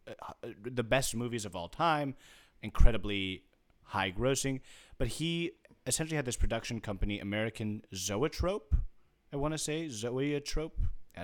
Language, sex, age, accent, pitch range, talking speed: English, male, 30-49, American, 100-125 Hz, 130 wpm